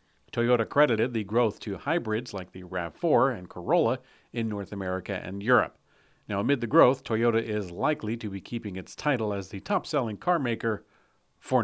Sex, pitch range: male, 100-125 Hz